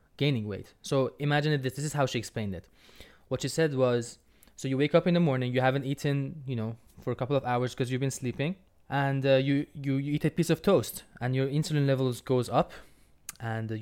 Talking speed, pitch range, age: 235 wpm, 115-140 Hz, 20-39